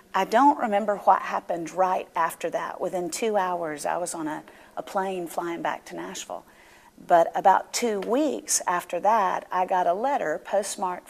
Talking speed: 175 wpm